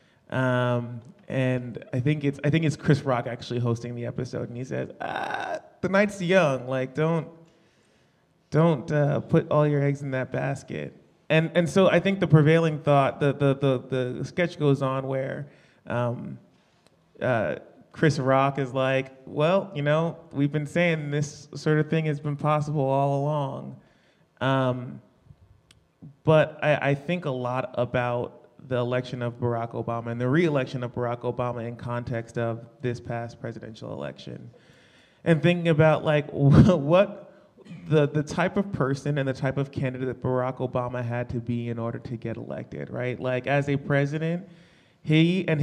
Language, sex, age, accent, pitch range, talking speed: English, male, 30-49, American, 125-155 Hz, 170 wpm